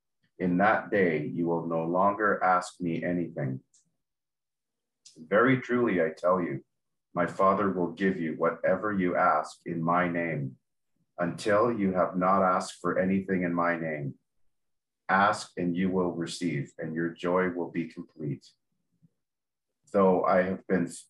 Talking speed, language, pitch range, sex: 145 wpm, English, 85-95 Hz, male